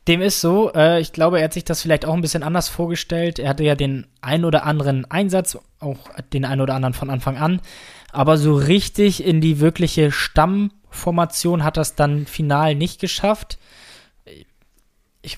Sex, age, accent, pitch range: male, 20-39, German, 135-160 Hz